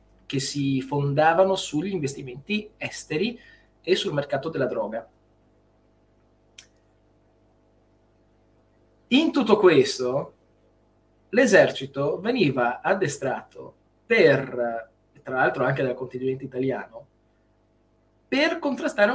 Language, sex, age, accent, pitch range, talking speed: Italian, male, 20-39, native, 130-215 Hz, 80 wpm